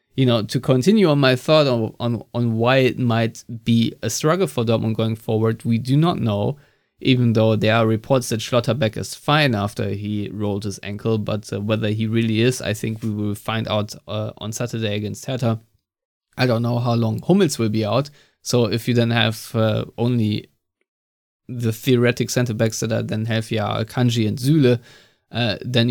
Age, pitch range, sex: 20-39, 110-125 Hz, male